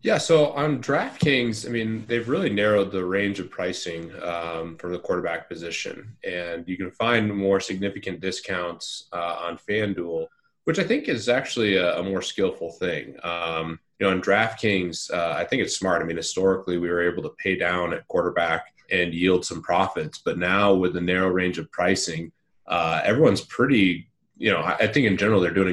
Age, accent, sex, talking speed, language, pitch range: 30-49, American, male, 195 wpm, English, 90-110 Hz